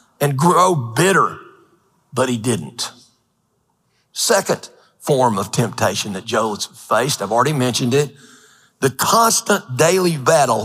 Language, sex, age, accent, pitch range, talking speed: English, male, 40-59, American, 140-195 Hz, 120 wpm